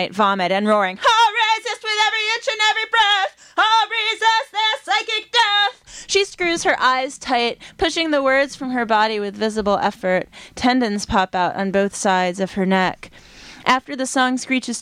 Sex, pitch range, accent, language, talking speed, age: female, 200-245 Hz, American, English, 180 wpm, 30-49